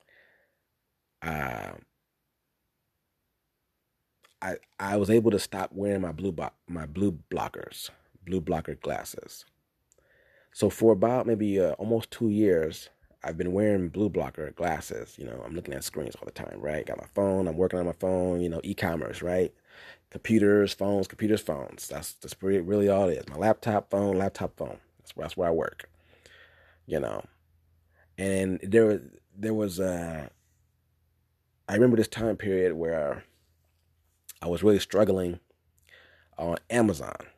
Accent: American